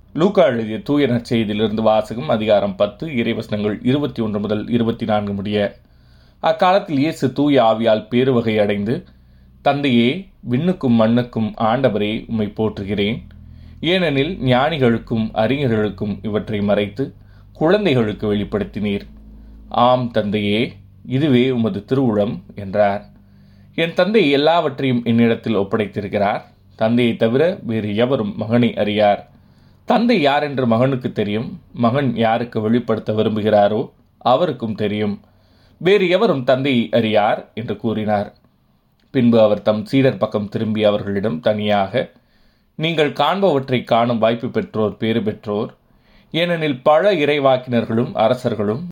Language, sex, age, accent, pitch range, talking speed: Tamil, male, 20-39, native, 105-130 Hz, 105 wpm